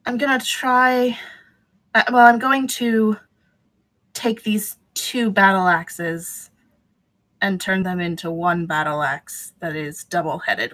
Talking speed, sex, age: 130 wpm, female, 20-39